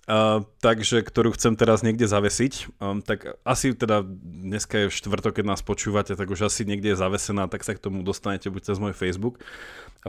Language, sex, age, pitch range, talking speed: Slovak, male, 30-49, 105-130 Hz, 200 wpm